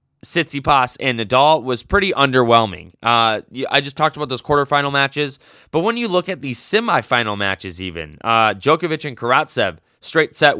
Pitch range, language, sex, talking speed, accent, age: 110-145 Hz, English, male, 165 wpm, American, 20-39